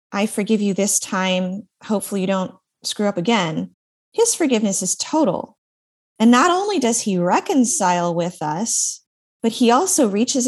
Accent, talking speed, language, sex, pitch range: American, 155 wpm, English, female, 185-260 Hz